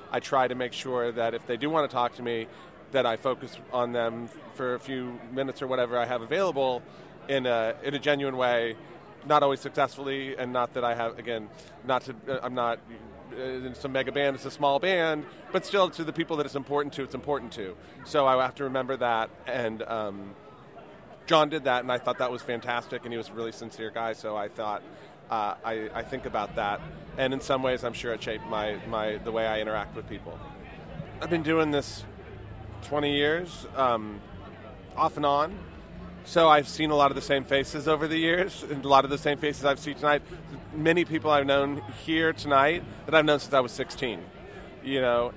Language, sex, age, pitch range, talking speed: English, male, 30-49, 120-145 Hz, 215 wpm